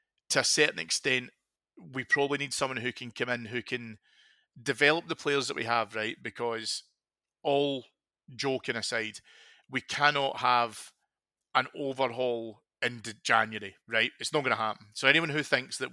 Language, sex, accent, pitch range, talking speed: English, male, British, 110-130 Hz, 160 wpm